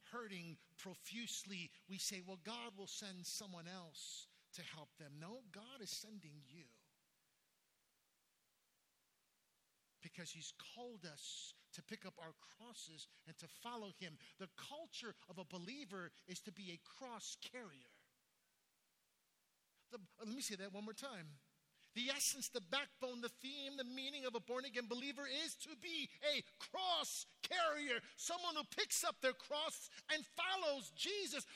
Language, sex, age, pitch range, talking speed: English, male, 50-69, 200-310 Hz, 150 wpm